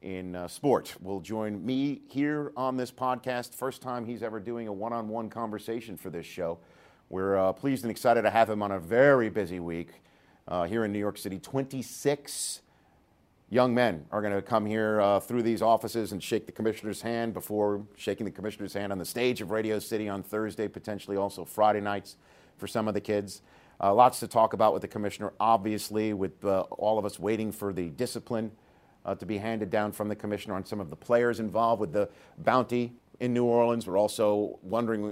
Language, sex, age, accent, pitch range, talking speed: English, male, 50-69, American, 100-115 Hz, 210 wpm